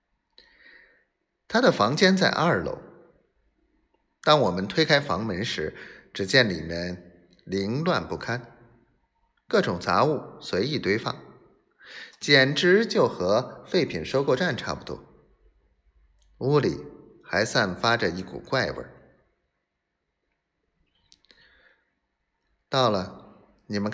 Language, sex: Chinese, male